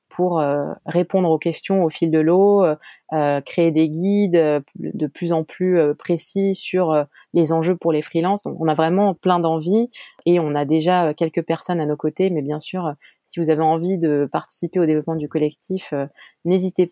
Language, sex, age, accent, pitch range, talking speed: French, female, 20-39, French, 155-180 Hz, 185 wpm